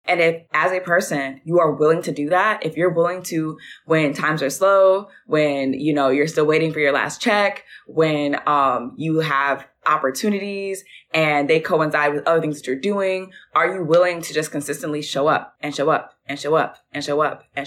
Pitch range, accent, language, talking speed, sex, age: 150-185 Hz, American, English, 205 wpm, female, 20-39